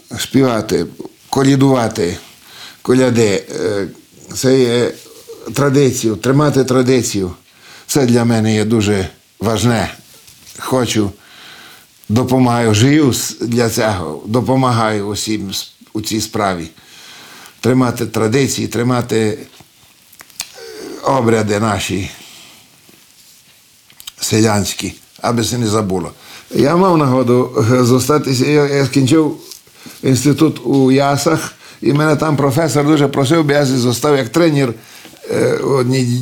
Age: 50-69